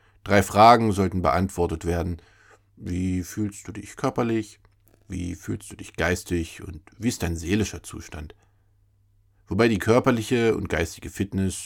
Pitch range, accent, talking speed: 90-105 Hz, German, 140 wpm